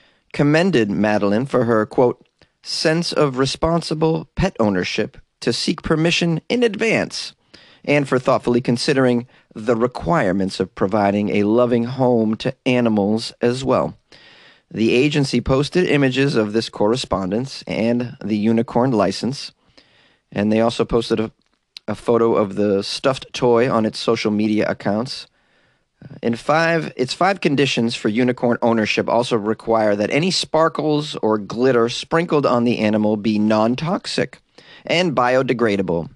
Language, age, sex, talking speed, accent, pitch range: English, 30-49, male, 135 wpm, American, 110-135 Hz